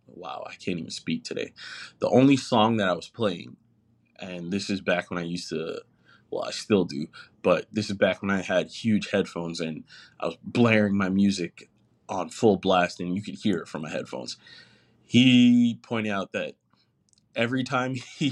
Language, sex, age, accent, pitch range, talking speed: English, male, 20-39, American, 90-115 Hz, 190 wpm